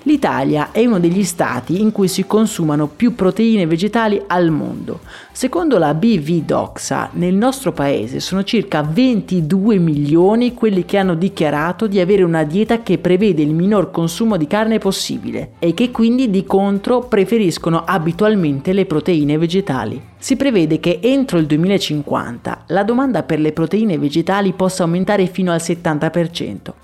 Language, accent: Italian, native